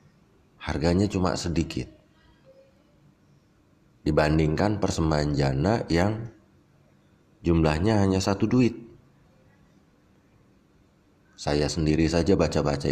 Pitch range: 75-100 Hz